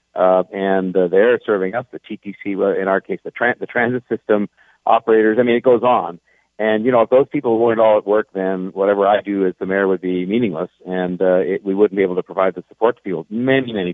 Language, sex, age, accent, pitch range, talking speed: English, male, 50-69, American, 95-115 Hz, 250 wpm